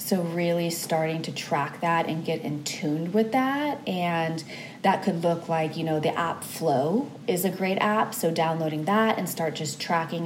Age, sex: 20-39, female